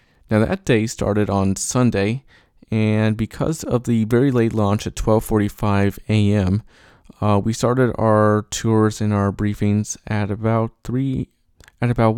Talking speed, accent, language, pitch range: 150 wpm, American, English, 105-120 Hz